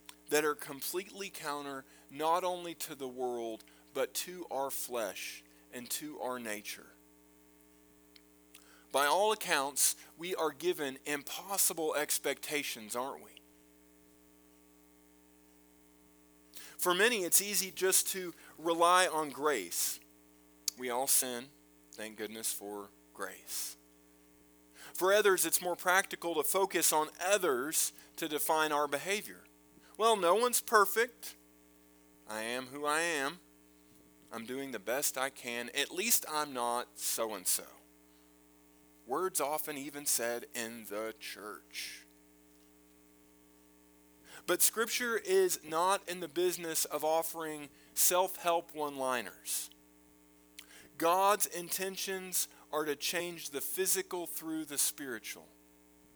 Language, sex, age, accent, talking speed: English, male, 40-59, American, 110 wpm